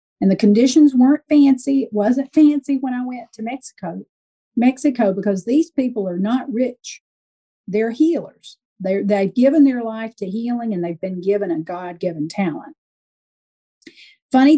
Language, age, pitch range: English, 50-69, 200-260 Hz